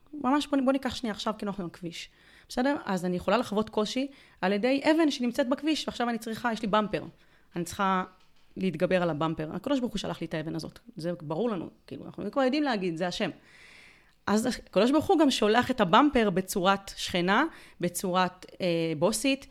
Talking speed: 195 wpm